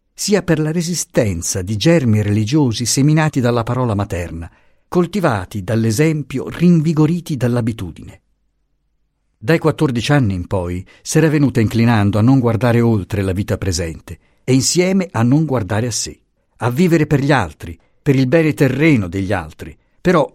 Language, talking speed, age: Italian, 145 wpm, 50-69